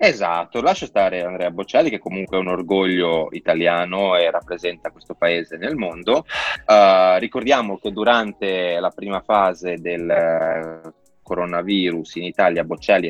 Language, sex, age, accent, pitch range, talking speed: Italian, male, 20-39, native, 85-100 Hz, 135 wpm